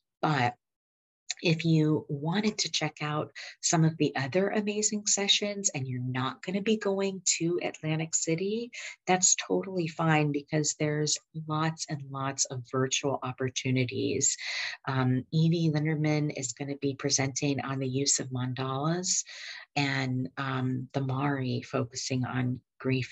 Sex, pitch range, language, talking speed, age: female, 135-160 Hz, English, 140 wpm, 40-59